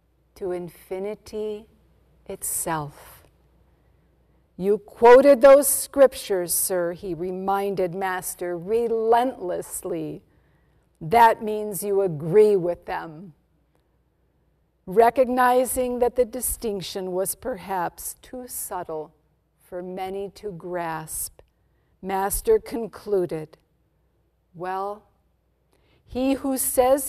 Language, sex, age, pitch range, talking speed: English, female, 50-69, 180-240 Hz, 80 wpm